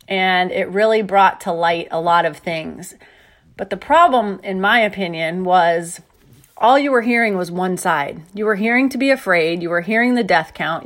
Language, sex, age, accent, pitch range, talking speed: English, female, 30-49, American, 180-235 Hz, 200 wpm